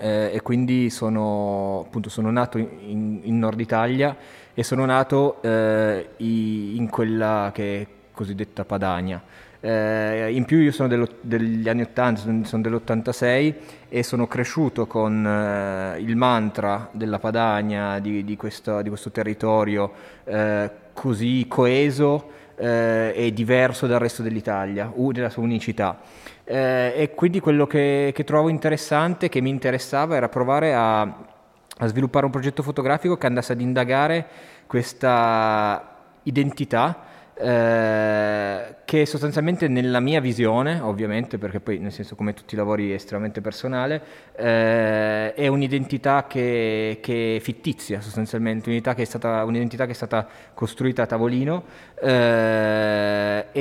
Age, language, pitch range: 20-39, Italian, 110-130 Hz